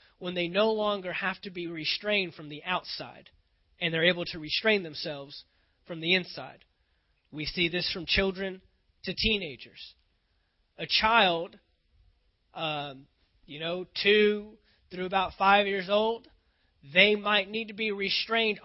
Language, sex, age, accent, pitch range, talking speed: English, male, 30-49, American, 155-210 Hz, 140 wpm